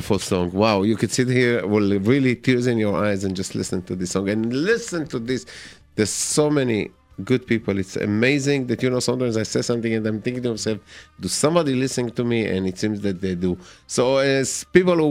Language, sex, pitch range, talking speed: English, male, 100-125 Hz, 220 wpm